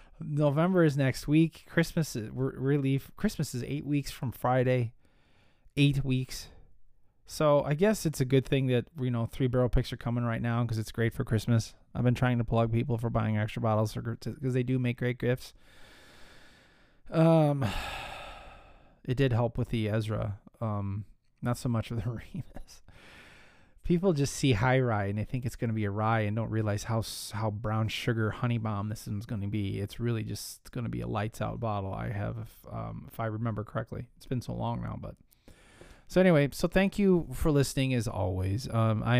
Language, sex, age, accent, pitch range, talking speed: English, male, 20-39, American, 110-130 Hz, 200 wpm